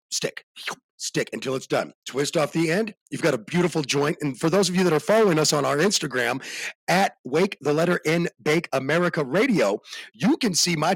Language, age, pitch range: English, 40-59, 145-215 Hz